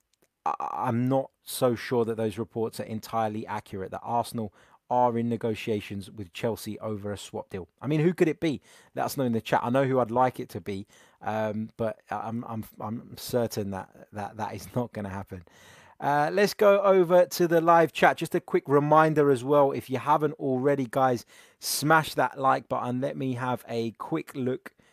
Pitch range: 110-140 Hz